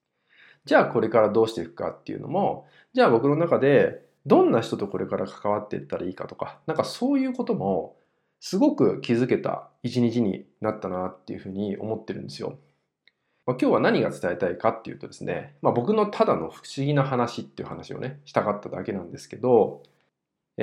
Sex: male